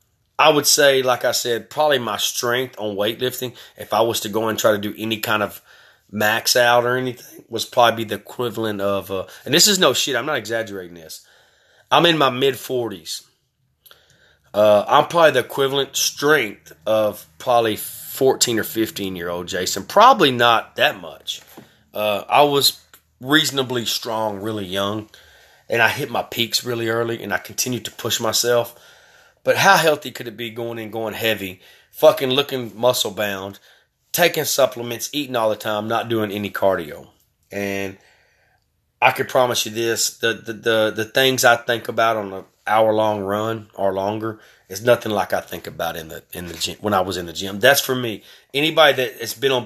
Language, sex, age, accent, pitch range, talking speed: English, male, 30-49, American, 105-125 Hz, 180 wpm